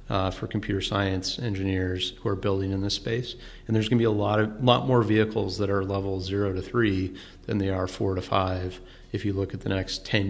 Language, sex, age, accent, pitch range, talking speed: English, male, 30-49, American, 95-110 Hz, 240 wpm